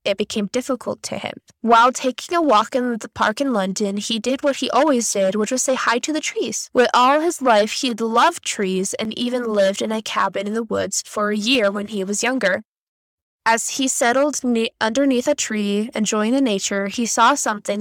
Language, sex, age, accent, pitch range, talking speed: English, female, 10-29, American, 210-270 Hz, 210 wpm